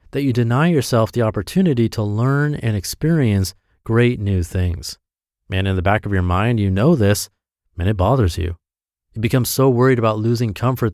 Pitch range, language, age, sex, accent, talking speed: 95-120 Hz, English, 30-49, male, American, 185 wpm